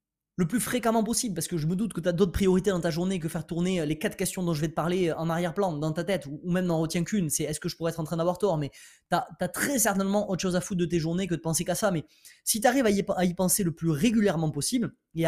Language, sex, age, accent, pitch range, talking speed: French, male, 20-39, French, 160-205 Hz, 310 wpm